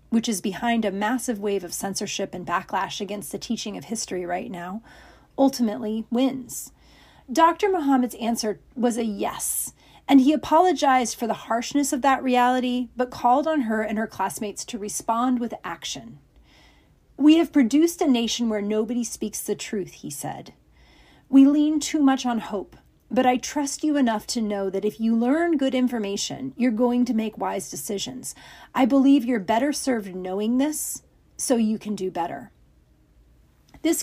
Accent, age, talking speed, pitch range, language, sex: American, 40-59, 170 wpm, 205-255 Hz, English, female